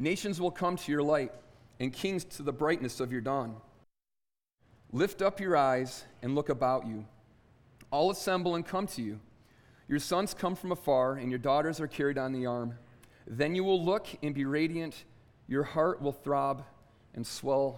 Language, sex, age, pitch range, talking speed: English, male, 40-59, 125-170 Hz, 180 wpm